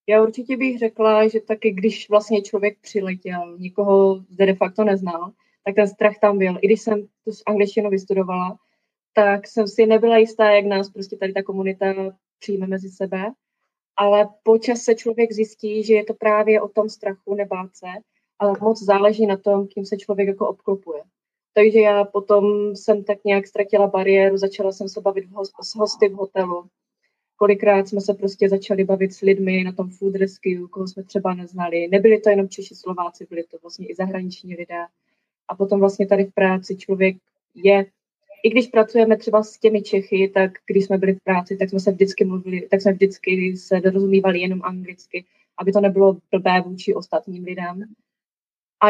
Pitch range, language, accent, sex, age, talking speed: 190-215 Hz, Czech, native, female, 20-39, 180 wpm